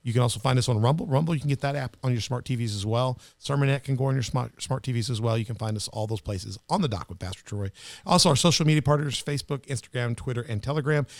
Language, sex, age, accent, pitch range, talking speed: English, male, 50-69, American, 110-140 Hz, 280 wpm